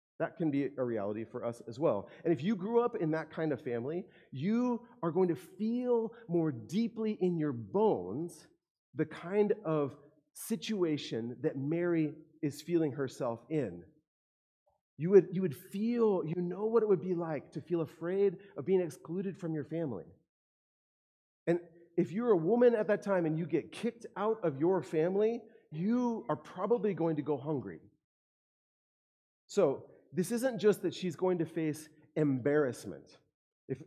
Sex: male